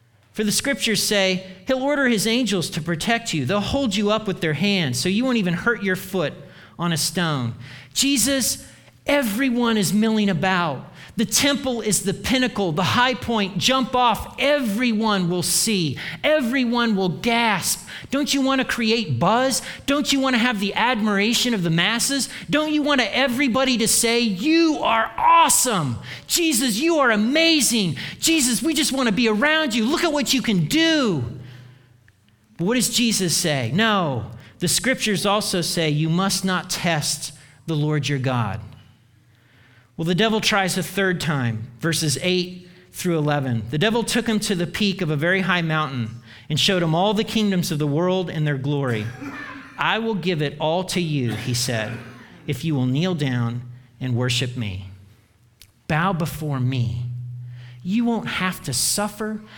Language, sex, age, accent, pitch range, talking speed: English, male, 40-59, American, 140-225 Hz, 165 wpm